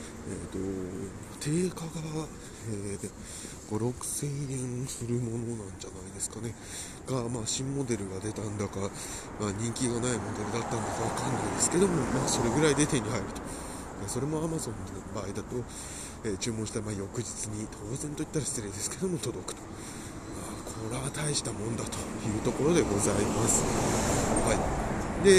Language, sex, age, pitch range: Japanese, male, 20-39, 105-140 Hz